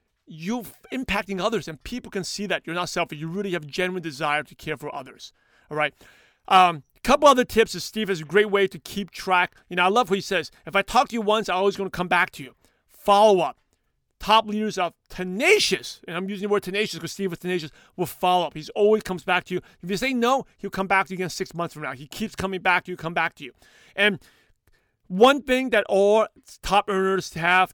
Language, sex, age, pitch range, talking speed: English, male, 40-59, 180-220 Hz, 250 wpm